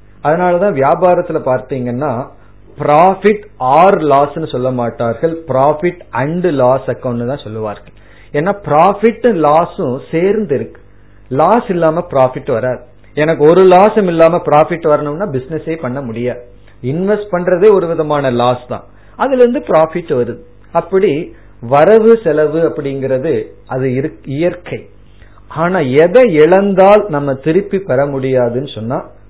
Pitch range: 115-165 Hz